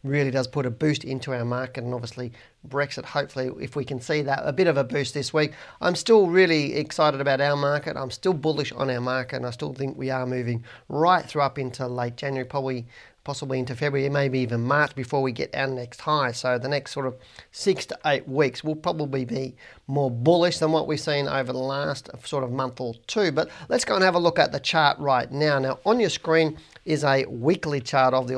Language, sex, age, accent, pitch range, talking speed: English, male, 40-59, Australian, 130-155 Hz, 235 wpm